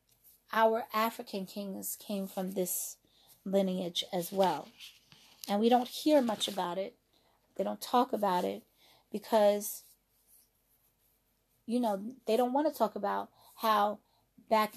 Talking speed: 130 wpm